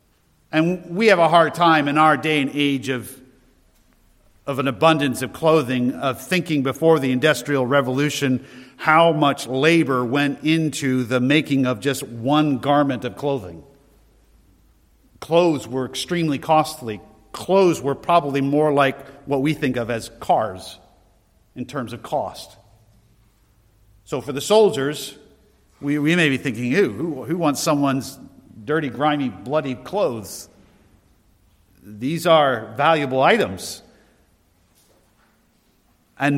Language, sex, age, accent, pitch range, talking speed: English, male, 50-69, American, 130-175 Hz, 125 wpm